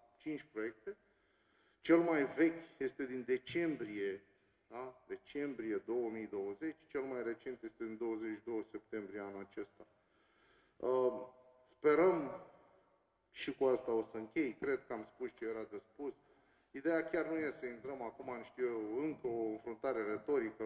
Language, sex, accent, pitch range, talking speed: Romanian, male, native, 120-165 Hz, 140 wpm